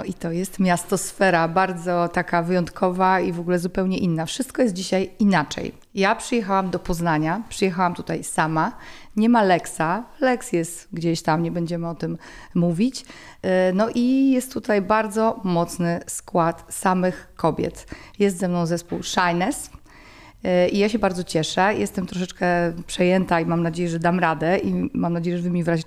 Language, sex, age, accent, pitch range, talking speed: Polish, female, 30-49, native, 170-195 Hz, 165 wpm